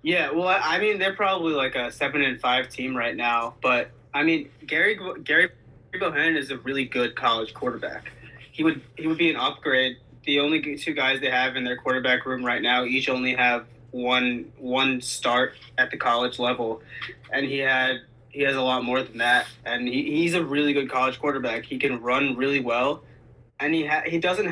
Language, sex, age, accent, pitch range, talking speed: English, male, 20-39, American, 125-145 Hz, 205 wpm